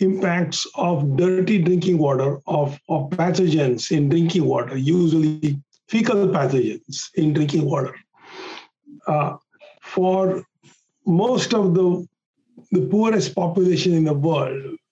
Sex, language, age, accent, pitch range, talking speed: male, English, 50-69, Indian, 165-205 Hz, 115 wpm